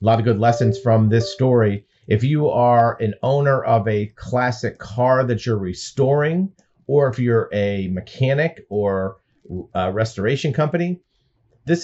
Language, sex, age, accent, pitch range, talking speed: English, male, 40-59, American, 105-130 Hz, 150 wpm